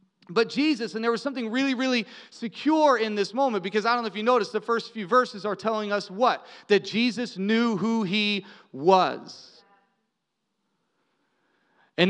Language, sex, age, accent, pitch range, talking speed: English, male, 30-49, American, 215-265 Hz, 170 wpm